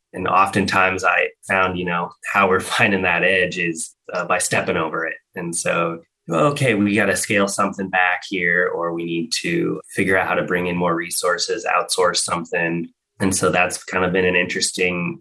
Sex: male